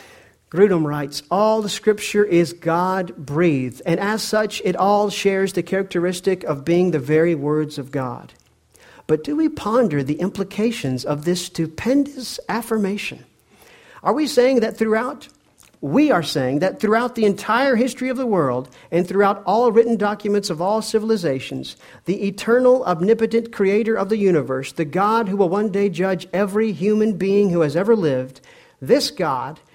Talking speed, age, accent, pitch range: 160 wpm, 50-69, American, 140-205 Hz